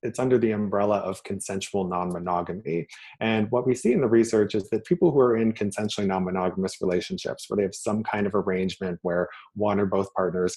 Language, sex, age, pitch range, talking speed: English, male, 30-49, 95-115 Hz, 200 wpm